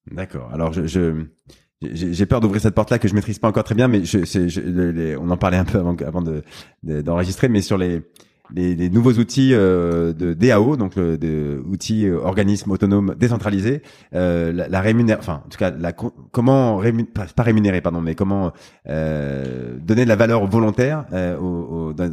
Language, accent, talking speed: French, French, 195 wpm